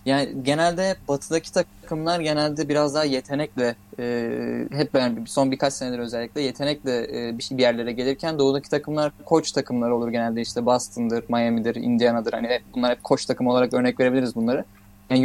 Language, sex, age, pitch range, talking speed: Turkish, male, 20-39, 120-155 Hz, 160 wpm